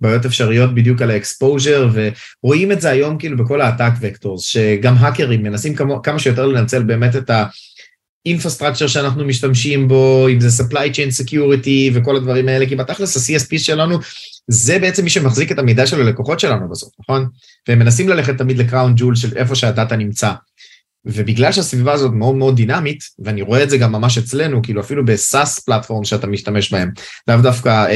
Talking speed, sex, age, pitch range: 165 wpm, male, 30-49, 115-140 Hz